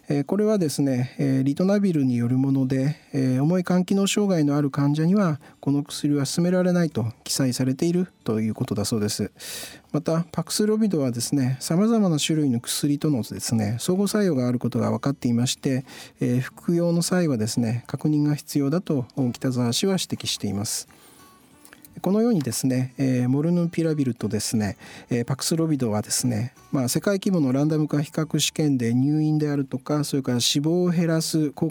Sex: male